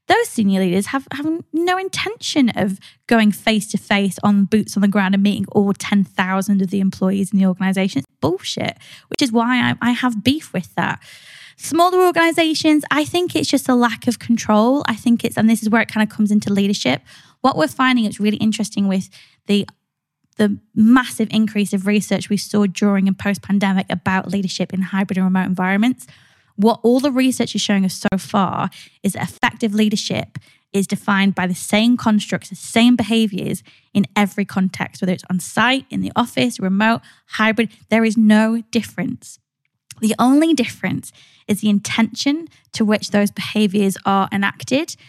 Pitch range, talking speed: 195-240 Hz, 180 wpm